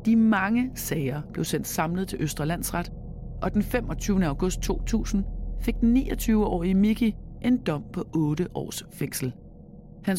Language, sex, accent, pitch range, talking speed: Danish, female, native, 145-195 Hz, 145 wpm